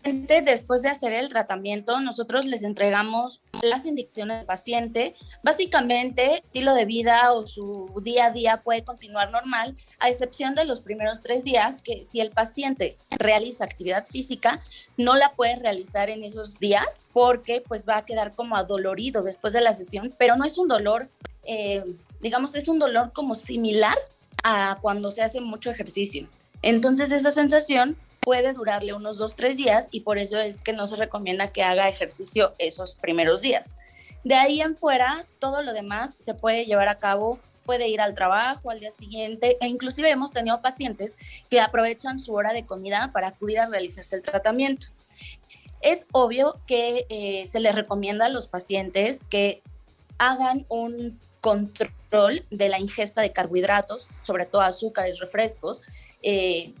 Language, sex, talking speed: Spanish, female, 165 wpm